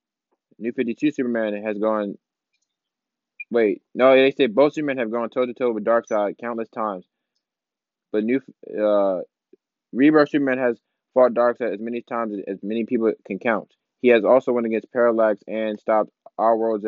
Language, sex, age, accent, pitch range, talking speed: English, male, 20-39, American, 110-125 Hz, 155 wpm